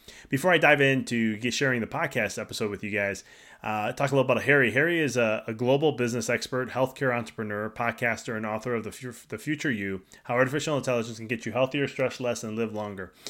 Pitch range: 115-145 Hz